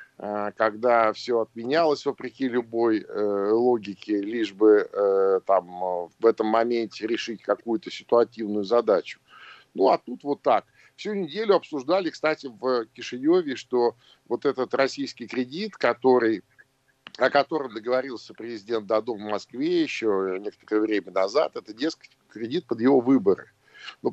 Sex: male